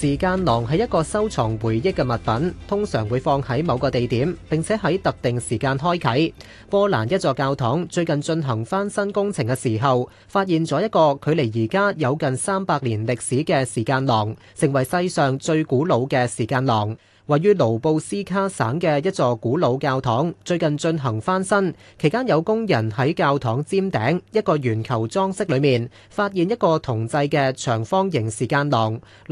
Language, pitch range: Chinese, 125-170 Hz